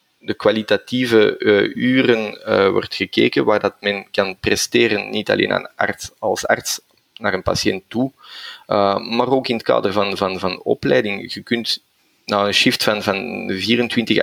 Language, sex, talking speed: Dutch, male, 175 wpm